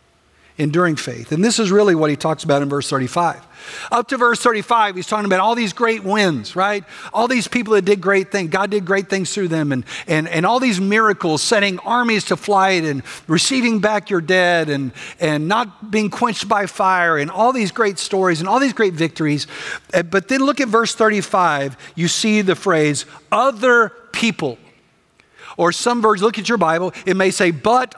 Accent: American